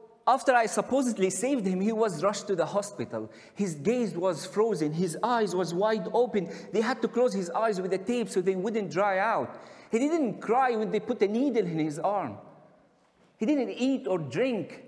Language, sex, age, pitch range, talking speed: English, male, 50-69, 195-245 Hz, 200 wpm